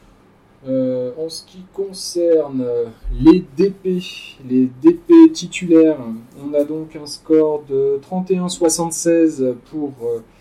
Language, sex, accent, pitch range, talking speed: French, male, French, 130-170 Hz, 110 wpm